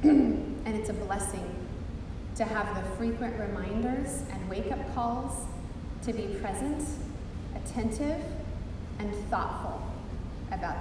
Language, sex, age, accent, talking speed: English, female, 20-39, American, 105 wpm